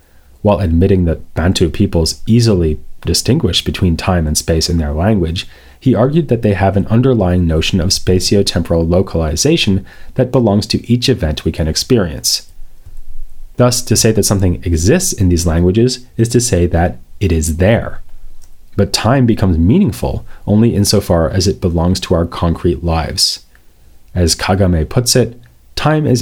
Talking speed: 155 wpm